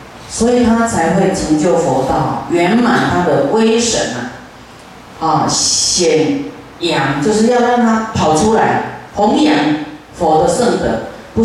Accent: native